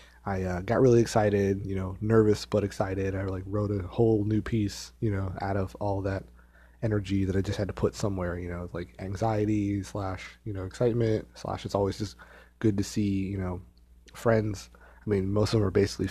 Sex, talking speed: male, 210 wpm